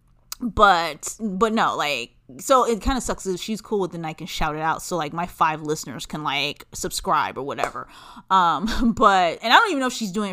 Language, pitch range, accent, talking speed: English, 165-220 Hz, American, 230 wpm